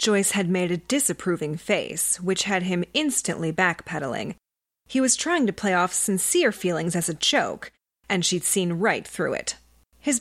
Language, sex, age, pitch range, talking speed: English, female, 30-49, 175-245 Hz, 170 wpm